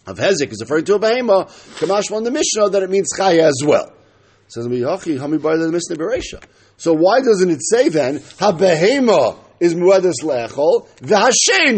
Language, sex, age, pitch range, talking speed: English, male, 50-69, 145-235 Hz, 160 wpm